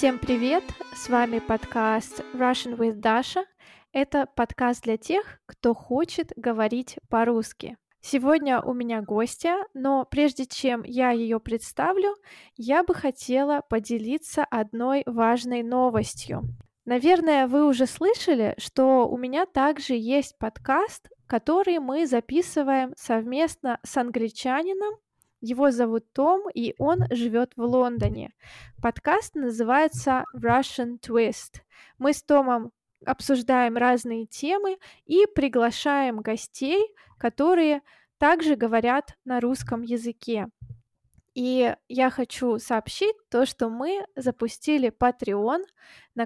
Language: Russian